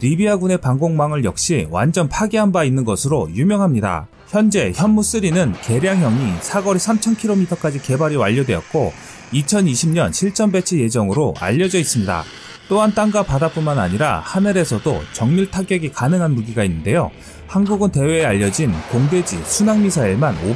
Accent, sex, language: native, male, Korean